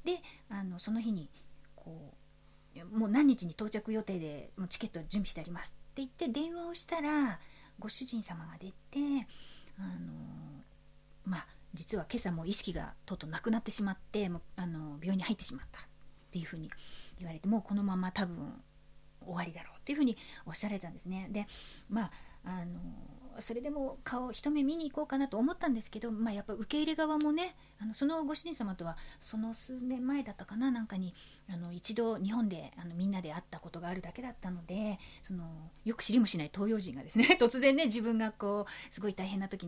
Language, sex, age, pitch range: Japanese, female, 40-59, 175-240 Hz